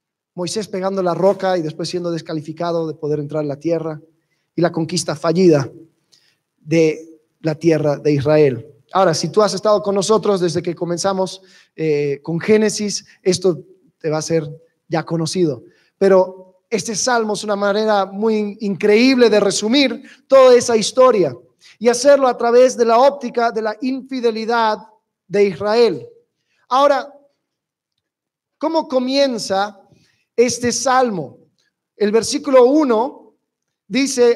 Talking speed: 135 wpm